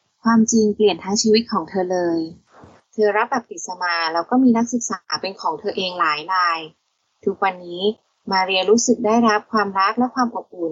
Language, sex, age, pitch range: Thai, female, 20-39, 185-230 Hz